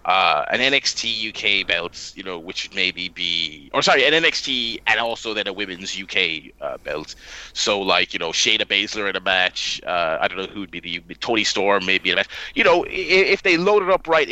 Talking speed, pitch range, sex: 220 wpm, 100-135 Hz, male